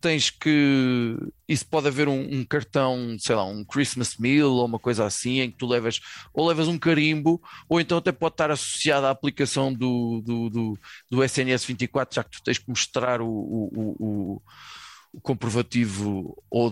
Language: Portuguese